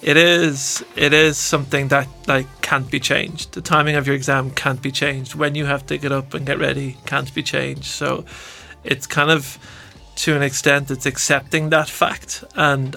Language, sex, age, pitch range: English, male, 30-49, 130-140 Hz